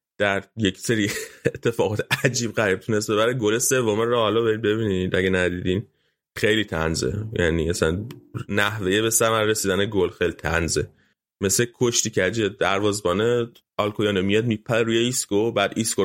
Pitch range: 100-120 Hz